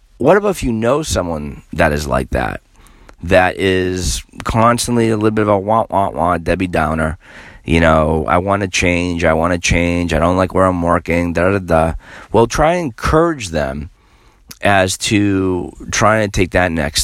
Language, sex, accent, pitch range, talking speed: English, male, American, 80-110 Hz, 190 wpm